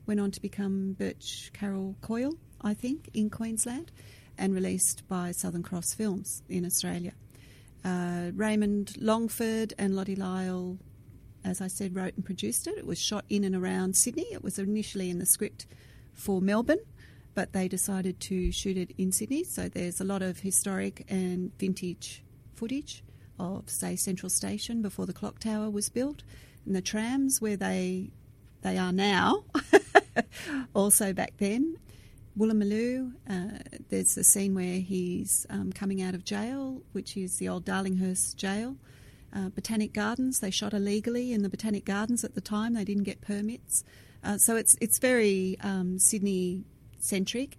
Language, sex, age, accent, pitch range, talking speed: English, female, 40-59, Australian, 185-215 Hz, 165 wpm